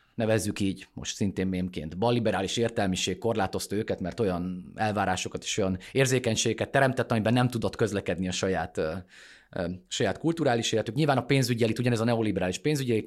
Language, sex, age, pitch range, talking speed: Hungarian, male, 30-49, 105-130 Hz, 145 wpm